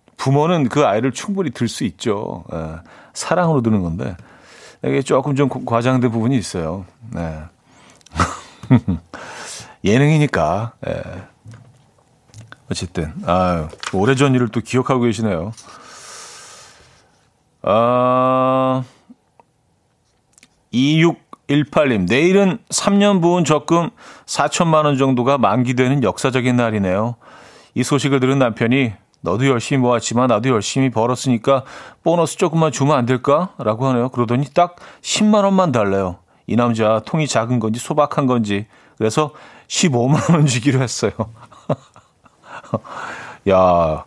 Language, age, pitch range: Korean, 40-59, 110-145 Hz